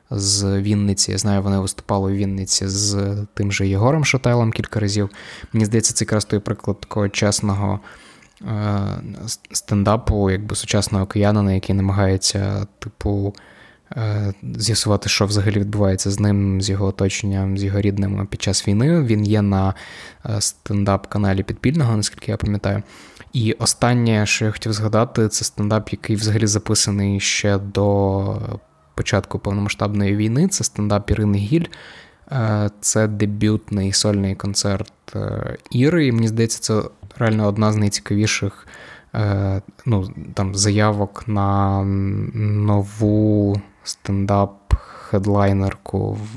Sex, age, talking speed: male, 20-39, 120 wpm